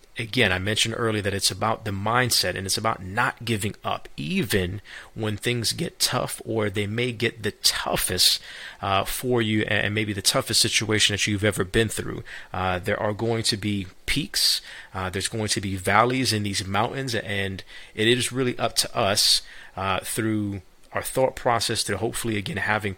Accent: American